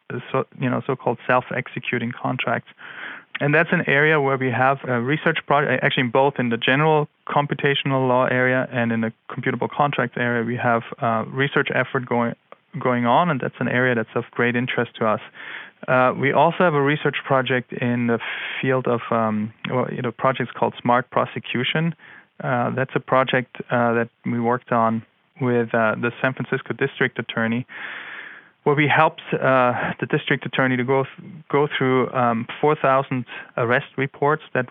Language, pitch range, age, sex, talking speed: English, 120-140 Hz, 20-39, male, 175 wpm